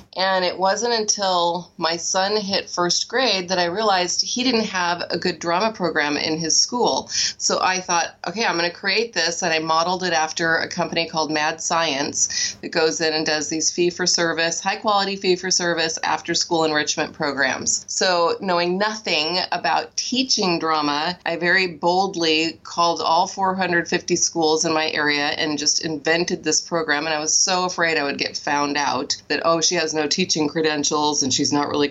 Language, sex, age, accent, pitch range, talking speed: English, female, 30-49, American, 160-185 Hz, 190 wpm